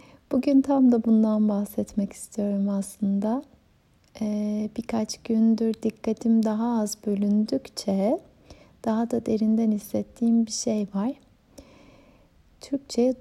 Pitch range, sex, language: 205-230 Hz, female, Turkish